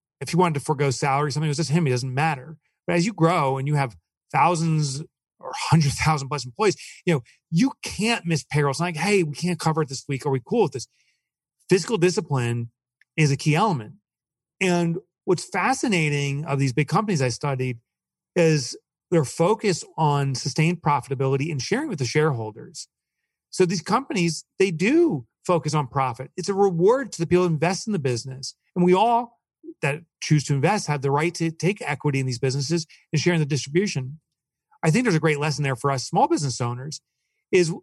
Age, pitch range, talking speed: 40-59, 135-180 Hz, 200 wpm